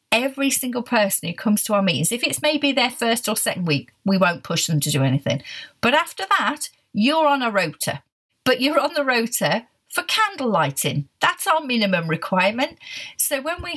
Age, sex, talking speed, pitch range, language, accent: 40-59, female, 195 wpm, 185-270 Hz, English, British